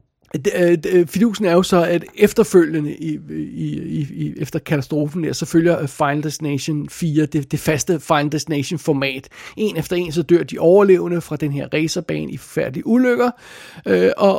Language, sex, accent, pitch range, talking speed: Danish, male, native, 150-180 Hz, 160 wpm